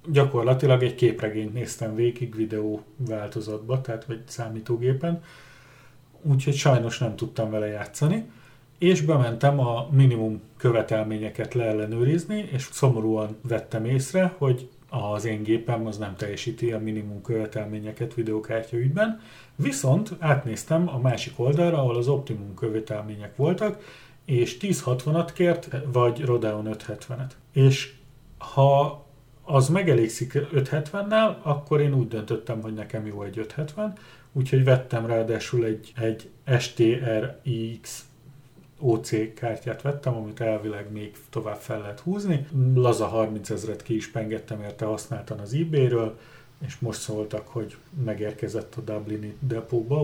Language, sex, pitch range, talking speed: Hungarian, male, 110-140 Hz, 120 wpm